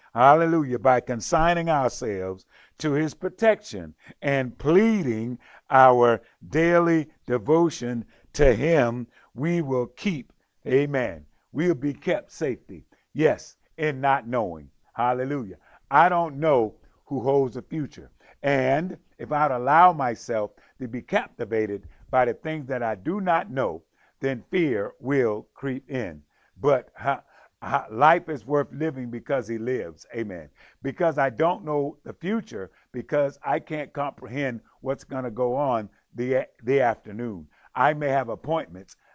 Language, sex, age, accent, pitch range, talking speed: English, male, 50-69, American, 120-155 Hz, 135 wpm